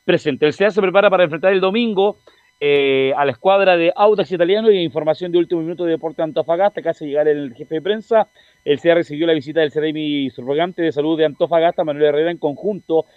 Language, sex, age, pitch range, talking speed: Spanish, male, 40-59, 135-175 Hz, 220 wpm